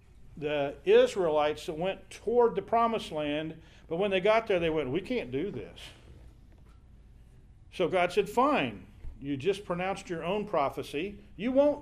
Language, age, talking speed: English, 50-69, 155 wpm